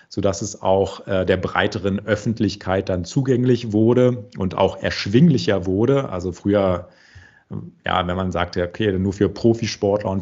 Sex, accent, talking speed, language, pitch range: male, German, 140 wpm, German, 90-105 Hz